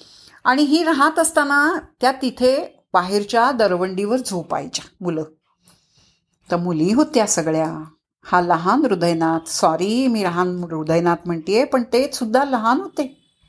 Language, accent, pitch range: Marathi, native, 200-285 Hz